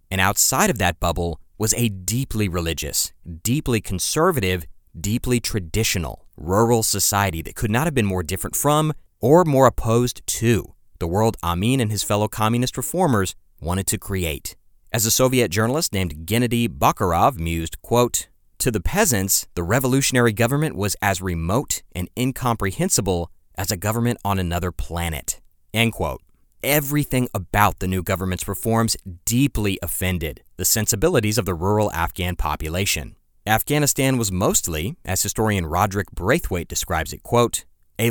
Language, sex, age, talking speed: English, male, 30-49, 145 wpm